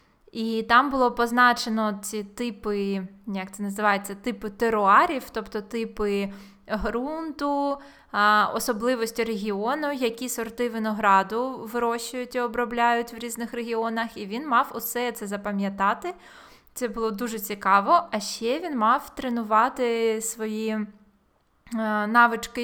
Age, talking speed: 20-39, 110 wpm